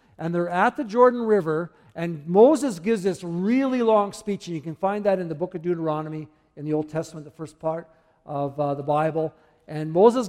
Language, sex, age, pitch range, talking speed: English, male, 50-69, 155-200 Hz, 210 wpm